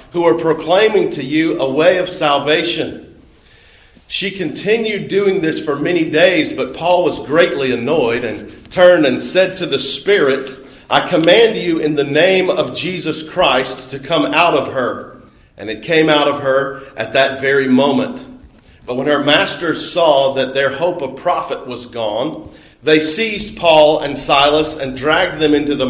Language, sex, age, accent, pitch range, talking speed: English, male, 40-59, American, 135-175 Hz, 170 wpm